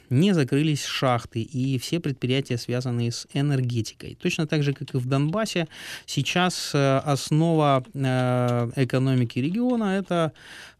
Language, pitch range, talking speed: Ukrainian, 120-145 Hz, 120 wpm